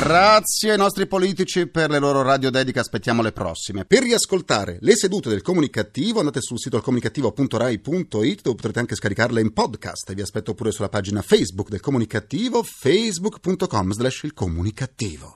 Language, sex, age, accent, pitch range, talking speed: Italian, male, 30-49, native, 95-135 Hz, 160 wpm